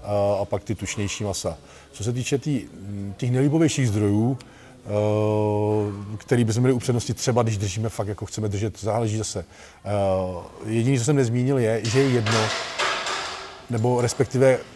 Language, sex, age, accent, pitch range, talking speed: Czech, male, 40-59, native, 105-125 Hz, 140 wpm